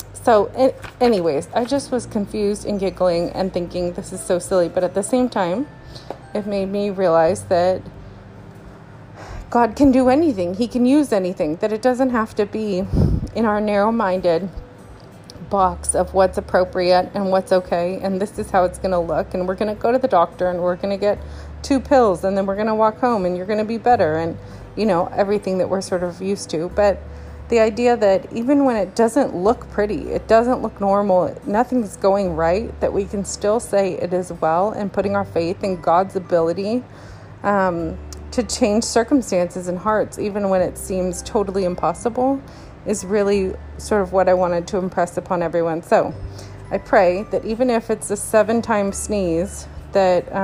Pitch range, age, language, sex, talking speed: 180-220 Hz, 30-49, English, female, 190 wpm